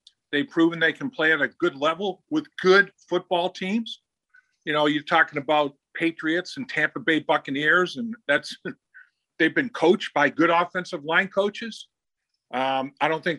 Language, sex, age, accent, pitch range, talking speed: English, male, 50-69, American, 150-180 Hz, 165 wpm